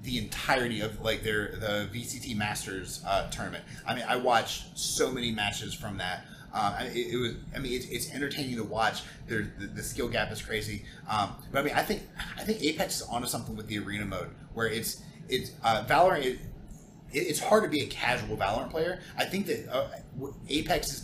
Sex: male